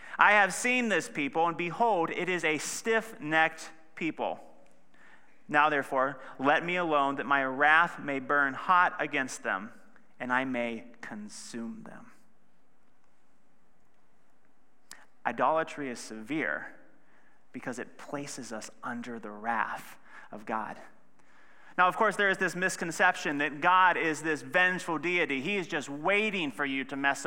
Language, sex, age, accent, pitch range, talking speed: English, male, 30-49, American, 145-205 Hz, 140 wpm